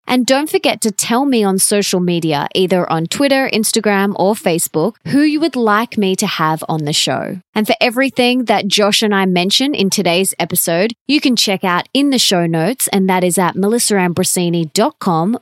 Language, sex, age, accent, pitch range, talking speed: English, female, 20-39, Australian, 185-240 Hz, 190 wpm